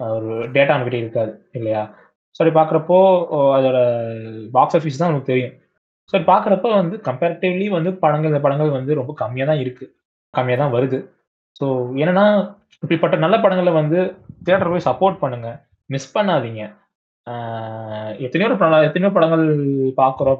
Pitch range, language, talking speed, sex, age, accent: 125-160 Hz, Tamil, 130 wpm, male, 20-39, native